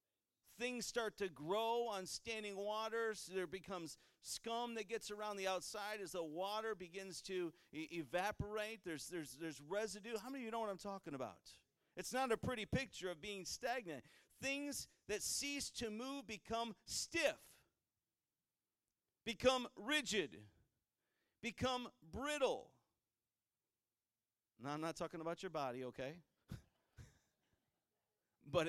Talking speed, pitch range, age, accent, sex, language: 130 wpm, 165-230 Hz, 50-69, American, male, English